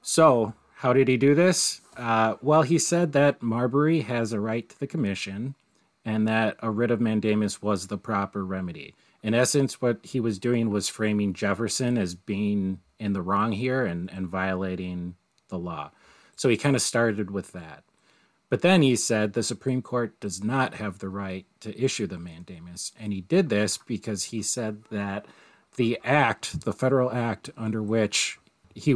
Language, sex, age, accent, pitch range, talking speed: English, male, 30-49, American, 100-120 Hz, 180 wpm